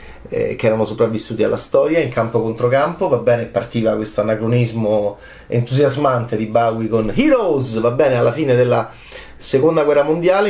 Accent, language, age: native, Italian, 30-49